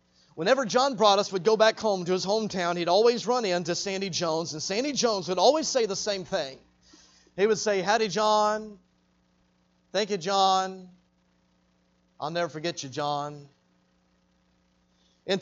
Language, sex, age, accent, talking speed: English, male, 40-59, American, 150 wpm